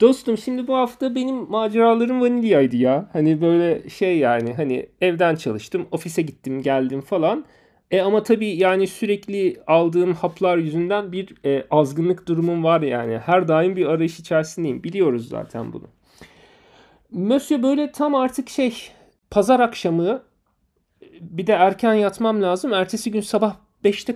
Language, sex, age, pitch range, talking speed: Turkish, male, 40-59, 140-200 Hz, 140 wpm